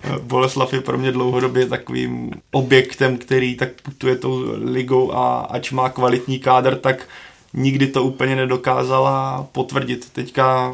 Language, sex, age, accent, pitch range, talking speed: Czech, male, 20-39, native, 125-135 Hz, 135 wpm